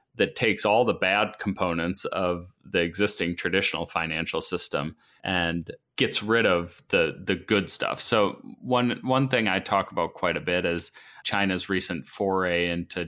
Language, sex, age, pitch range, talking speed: English, male, 30-49, 85-105 Hz, 160 wpm